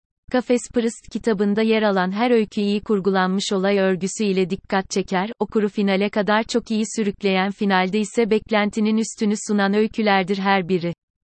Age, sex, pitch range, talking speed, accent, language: 30-49, female, 195-220 Hz, 150 wpm, native, Turkish